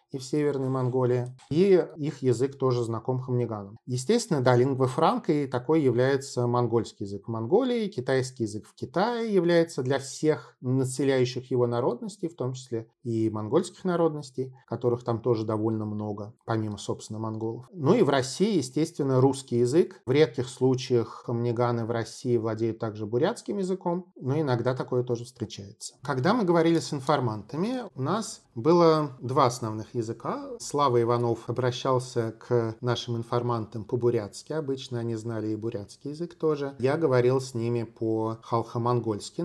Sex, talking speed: male, 150 wpm